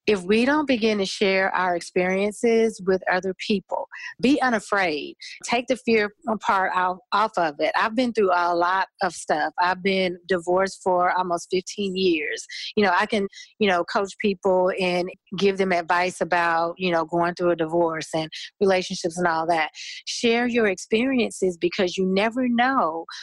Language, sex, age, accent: English, female, 40-59, American